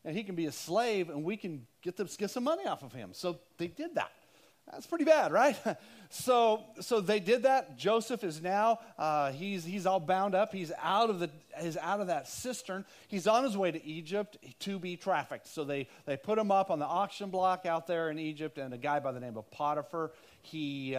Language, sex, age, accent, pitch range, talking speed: English, male, 40-59, American, 155-225 Hz, 230 wpm